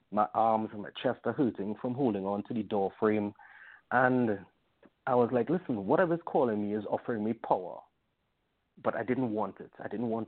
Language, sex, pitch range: English, male, 105-125 Hz